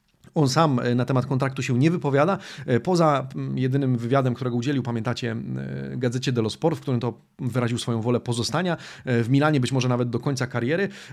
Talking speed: 175 wpm